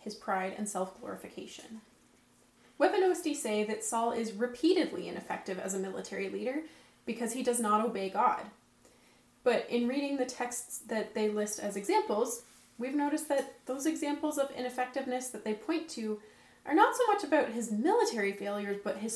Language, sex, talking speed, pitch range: English, female, 165 wpm, 210-280 Hz